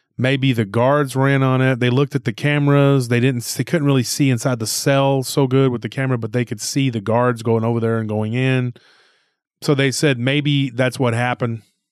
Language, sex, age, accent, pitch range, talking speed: English, male, 30-49, American, 115-140 Hz, 220 wpm